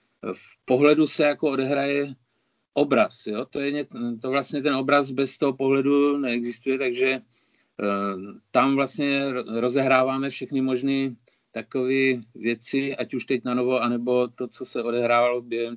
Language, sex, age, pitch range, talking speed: Czech, male, 50-69, 115-135 Hz, 130 wpm